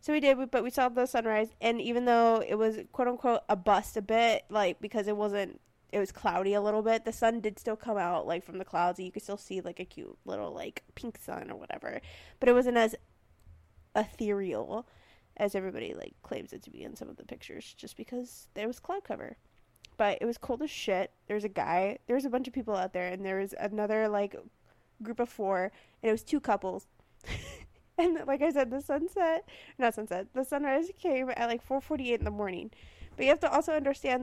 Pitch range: 205-265 Hz